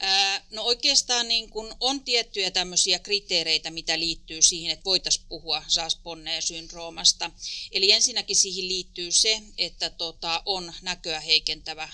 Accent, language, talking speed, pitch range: native, Finnish, 120 wpm, 165-195 Hz